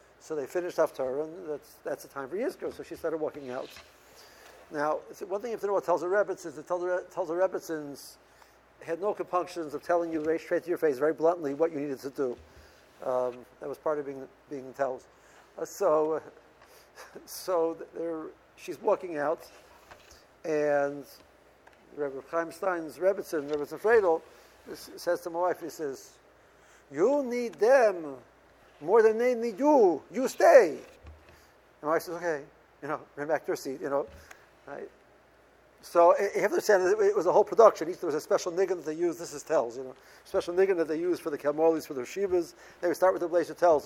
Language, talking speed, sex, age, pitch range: English, 195 wpm, male, 60-79, 155-195 Hz